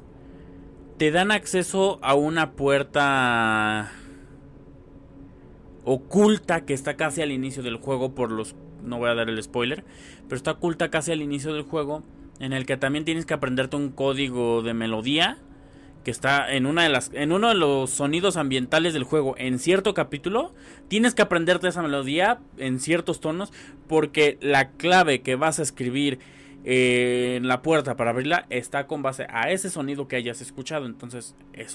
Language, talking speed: Spanish, 170 wpm